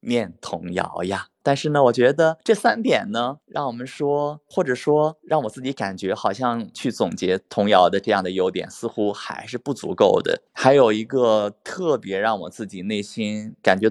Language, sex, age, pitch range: Chinese, male, 20-39, 110-145 Hz